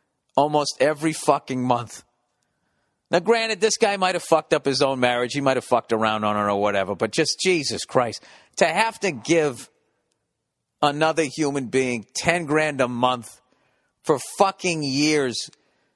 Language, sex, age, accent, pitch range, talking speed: English, male, 40-59, American, 130-170 Hz, 160 wpm